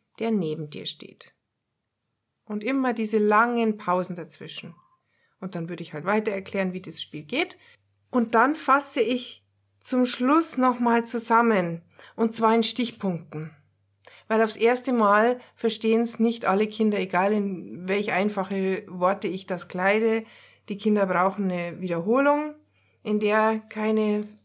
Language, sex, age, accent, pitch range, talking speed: German, female, 60-79, German, 185-235 Hz, 140 wpm